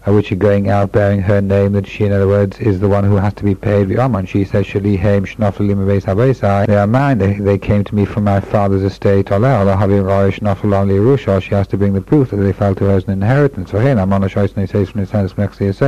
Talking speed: 185 wpm